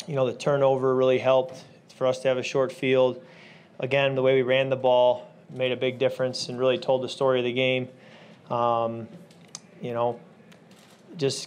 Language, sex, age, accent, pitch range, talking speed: English, male, 20-39, American, 125-145 Hz, 190 wpm